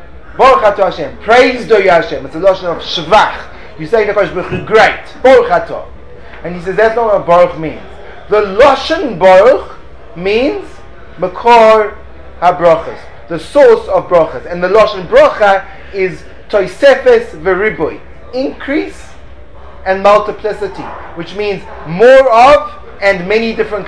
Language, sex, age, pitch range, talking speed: English, male, 30-49, 175-225 Hz, 130 wpm